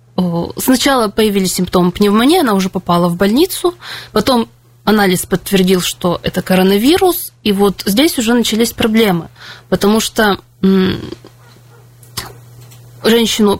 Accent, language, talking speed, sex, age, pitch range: native, Russian, 105 wpm, female, 20-39, 180-235 Hz